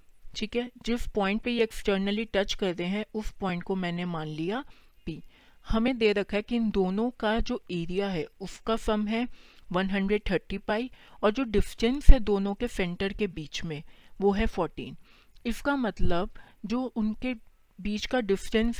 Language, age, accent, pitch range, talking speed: Hindi, 40-59, native, 180-225 Hz, 170 wpm